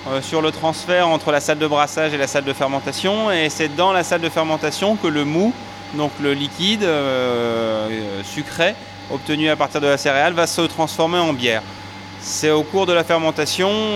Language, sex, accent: French, male, French